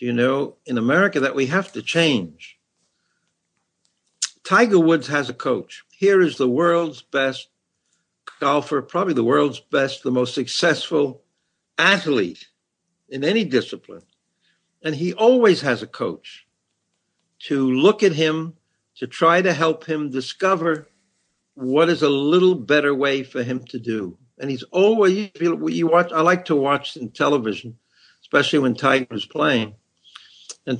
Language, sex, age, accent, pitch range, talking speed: English, male, 60-79, American, 135-185 Hz, 140 wpm